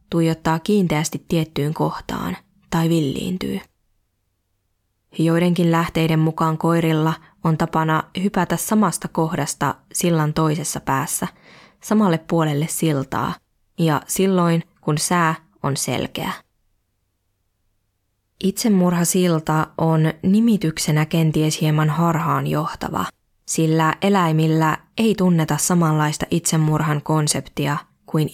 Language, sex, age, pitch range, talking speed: Finnish, female, 20-39, 150-170 Hz, 90 wpm